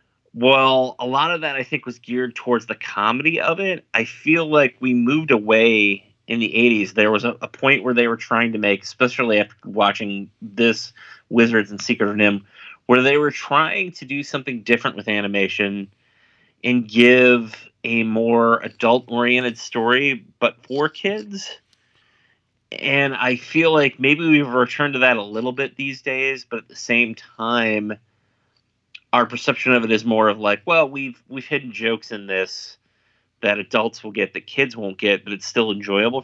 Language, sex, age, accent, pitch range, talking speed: English, male, 30-49, American, 105-135 Hz, 180 wpm